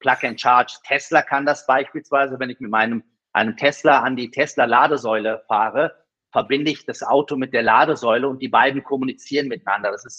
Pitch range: 115-140 Hz